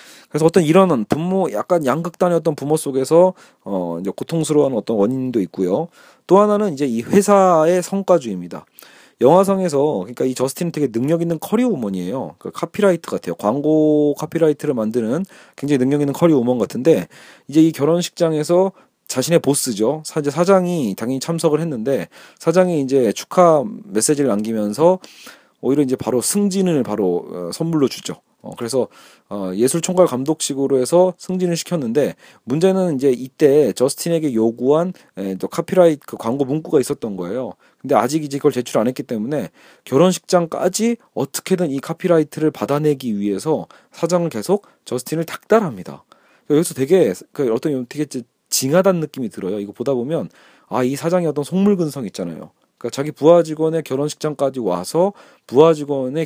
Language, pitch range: Korean, 130-175 Hz